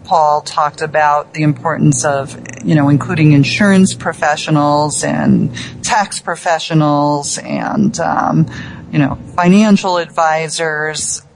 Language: English